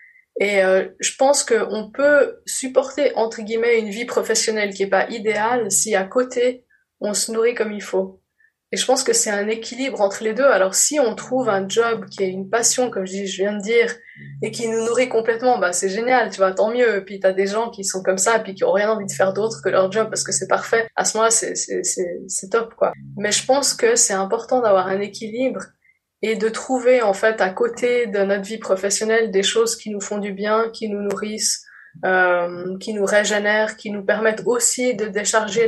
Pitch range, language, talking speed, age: 200-235 Hz, French, 225 wpm, 20-39